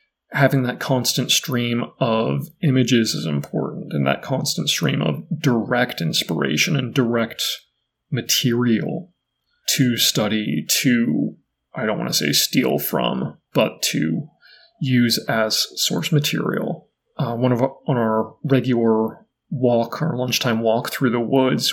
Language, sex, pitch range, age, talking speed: English, male, 115-140 Hz, 30-49, 135 wpm